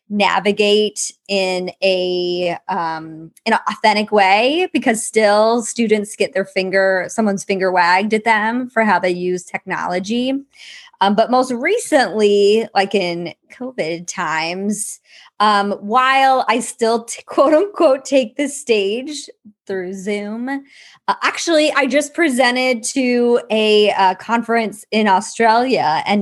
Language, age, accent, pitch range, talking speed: English, 20-39, American, 195-255 Hz, 130 wpm